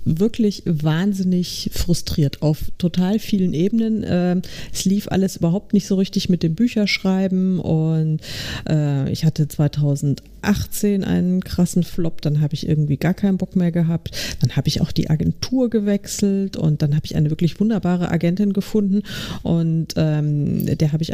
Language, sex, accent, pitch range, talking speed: German, female, German, 150-190 Hz, 150 wpm